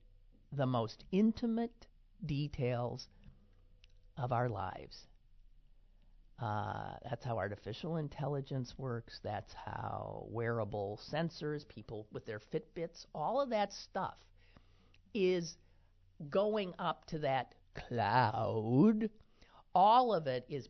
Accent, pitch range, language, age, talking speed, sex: American, 95-155 Hz, English, 50-69, 100 wpm, male